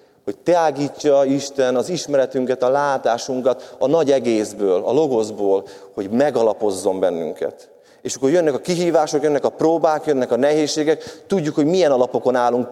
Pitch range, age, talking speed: 120-195 Hz, 30-49, 145 wpm